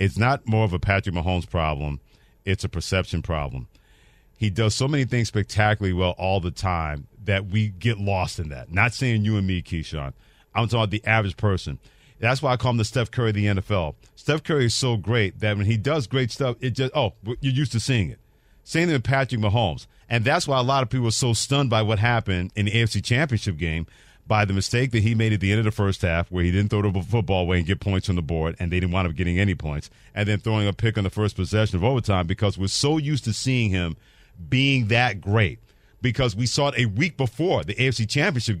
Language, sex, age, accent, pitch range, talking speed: English, male, 40-59, American, 95-120 Hz, 245 wpm